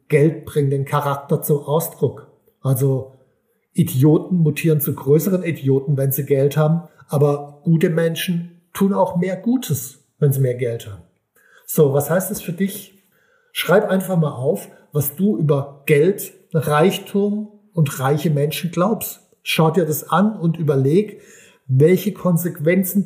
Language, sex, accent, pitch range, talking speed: German, male, German, 145-175 Hz, 145 wpm